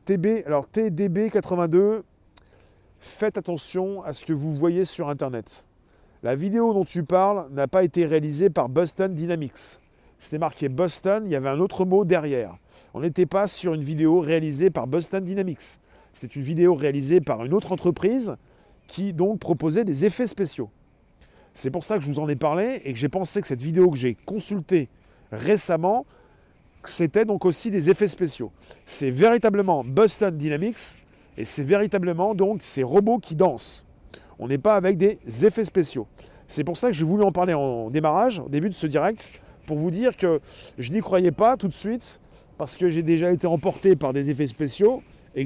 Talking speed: 185 wpm